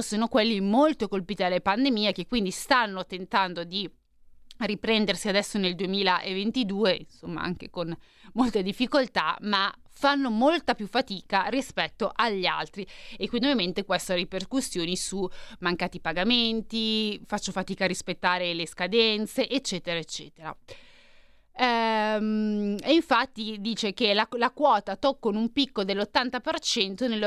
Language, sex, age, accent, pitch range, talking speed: Italian, female, 20-39, native, 185-245 Hz, 125 wpm